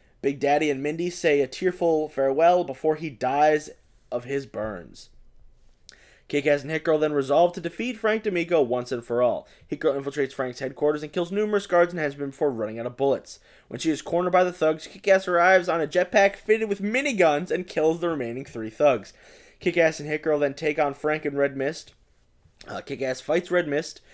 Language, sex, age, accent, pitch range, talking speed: English, male, 20-39, American, 140-175 Hz, 205 wpm